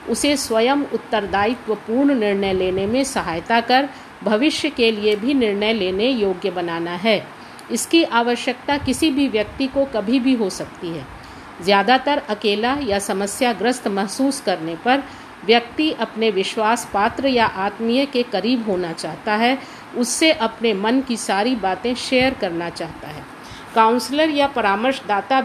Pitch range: 205-265 Hz